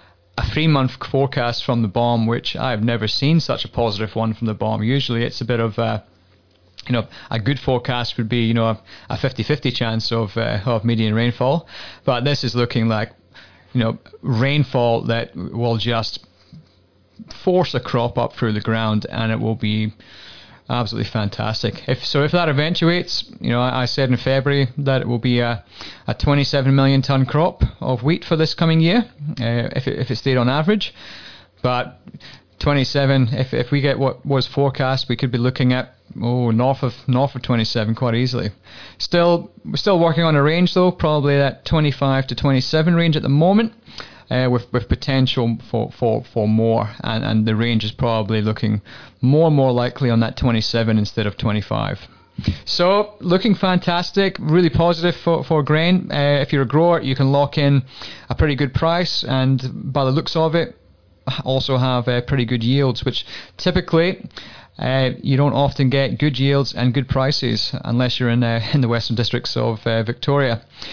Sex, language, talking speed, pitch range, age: male, English, 185 wpm, 115-145 Hz, 20-39